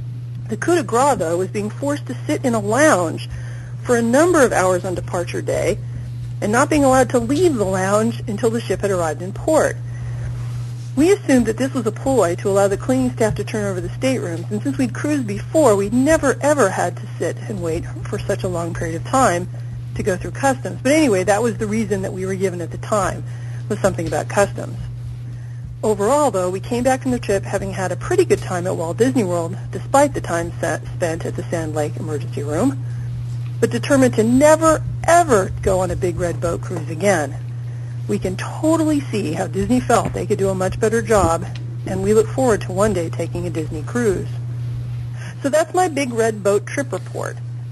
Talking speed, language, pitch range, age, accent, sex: 210 wpm, English, 120-160 Hz, 40-59, American, female